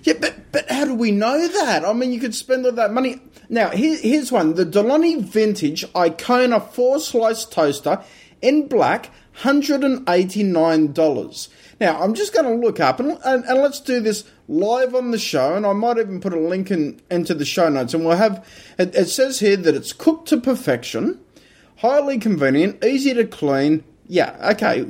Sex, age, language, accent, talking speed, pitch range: male, 30-49, English, Australian, 190 wpm, 160-250 Hz